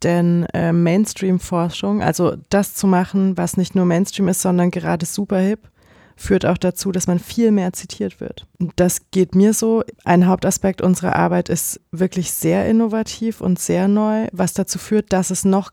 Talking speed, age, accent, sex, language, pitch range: 170 wpm, 20-39, German, female, German, 175-195 Hz